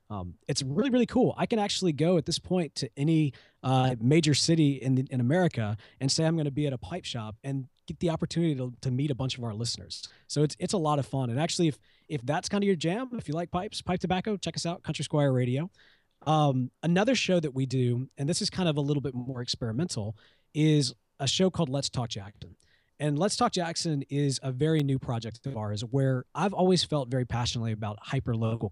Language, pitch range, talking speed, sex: English, 115-160 Hz, 235 wpm, male